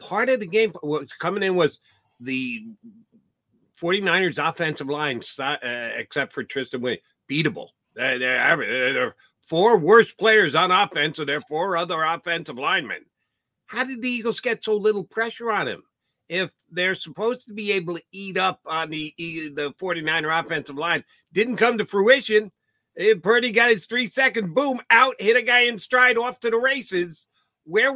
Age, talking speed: 50-69, 170 wpm